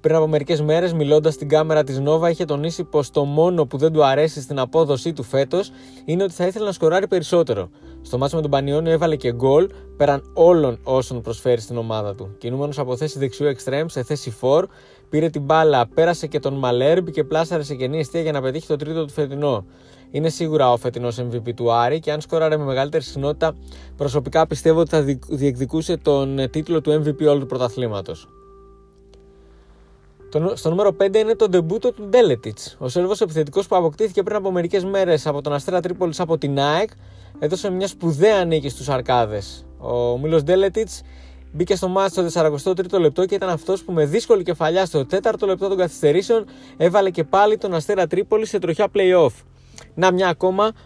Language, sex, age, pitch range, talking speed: Greek, male, 20-39, 130-175 Hz, 190 wpm